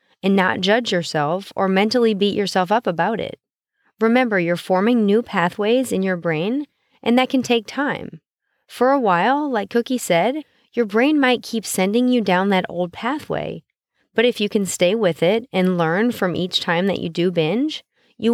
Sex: female